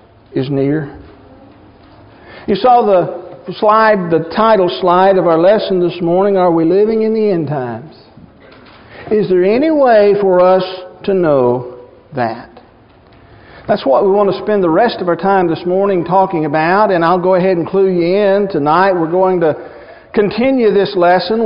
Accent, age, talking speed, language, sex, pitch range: American, 50-69, 170 wpm, English, male, 175-215 Hz